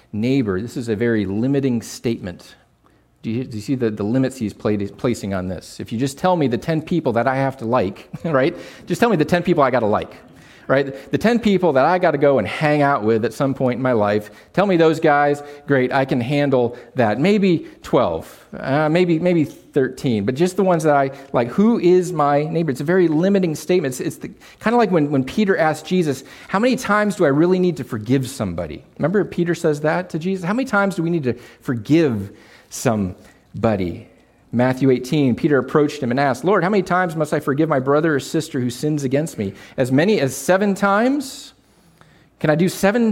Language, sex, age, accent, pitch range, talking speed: English, male, 40-59, American, 130-180 Hz, 220 wpm